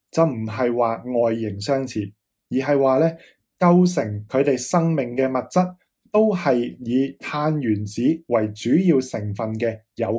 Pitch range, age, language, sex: 115-160 Hz, 20-39, Chinese, male